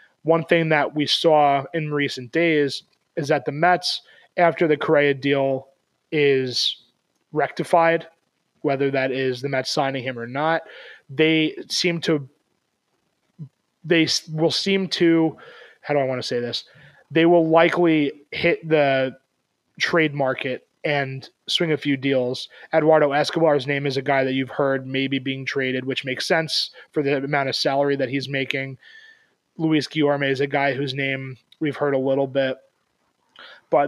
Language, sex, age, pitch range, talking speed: English, male, 20-39, 135-155 Hz, 160 wpm